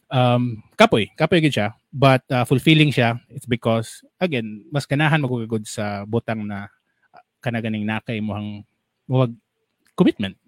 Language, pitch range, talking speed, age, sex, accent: English, 110-135 Hz, 135 wpm, 20-39, male, Filipino